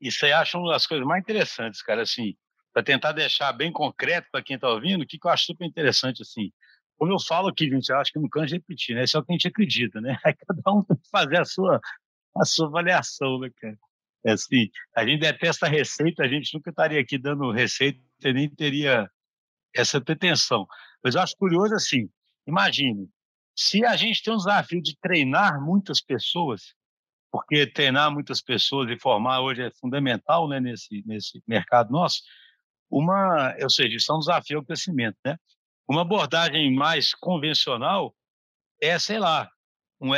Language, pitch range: Portuguese, 135-175 Hz